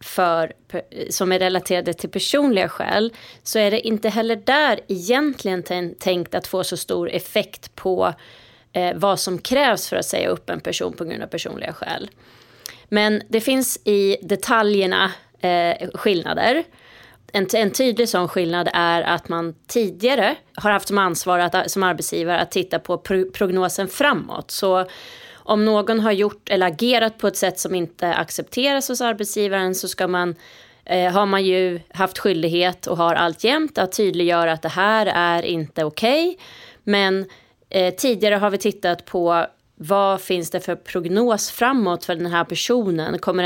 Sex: female